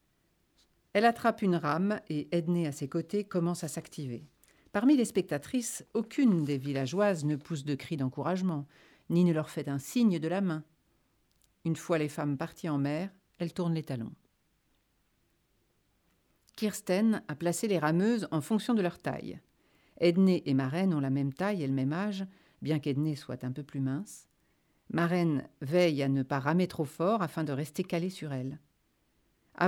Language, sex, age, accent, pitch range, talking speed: French, female, 50-69, French, 140-190 Hz, 175 wpm